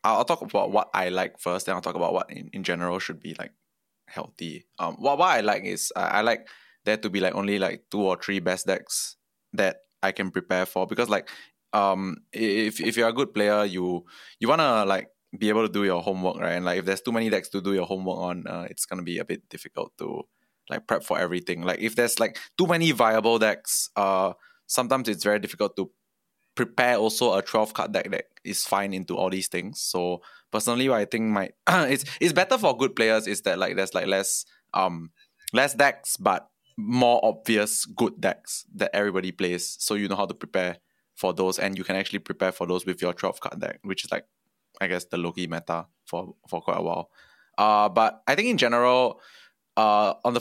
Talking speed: 220 wpm